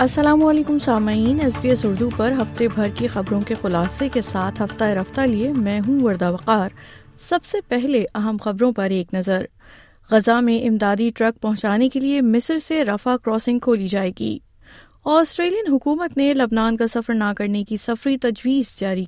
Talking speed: 175 wpm